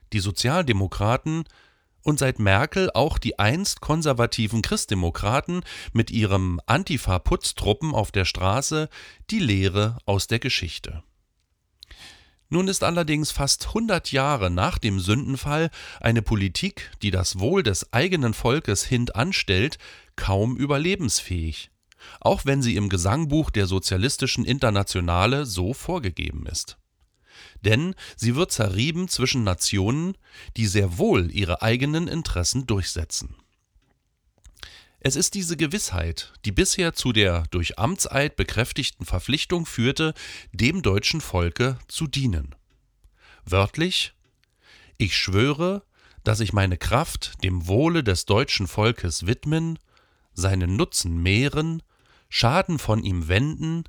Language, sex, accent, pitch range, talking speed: German, male, German, 95-145 Hz, 115 wpm